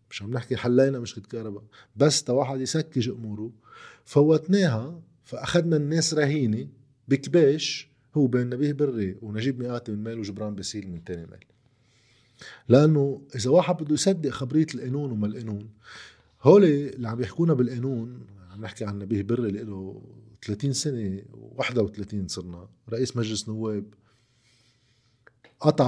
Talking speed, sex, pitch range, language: 135 wpm, male, 115-145 Hz, Arabic